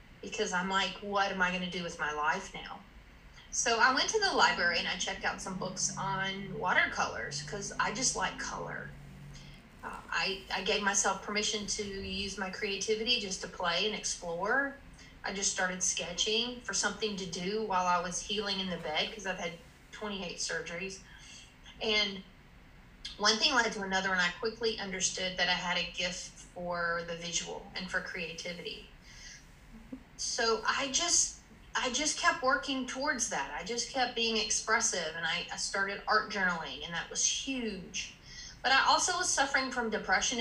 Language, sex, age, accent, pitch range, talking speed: English, female, 30-49, American, 185-225 Hz, 175 wpm